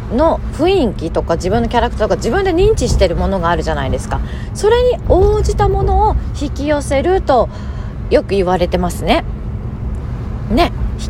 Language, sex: Japanese, female